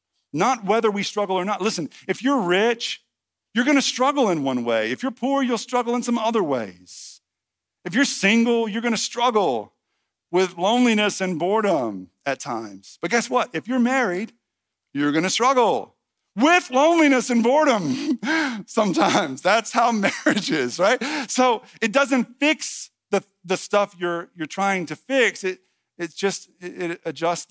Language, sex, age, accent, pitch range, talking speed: English, male, 50-69, American, 165-240 Hz, 165 wpm